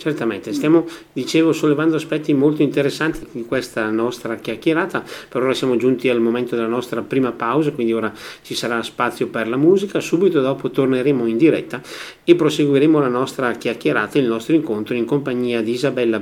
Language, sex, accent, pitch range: Italian, male, native, 115-155 Hz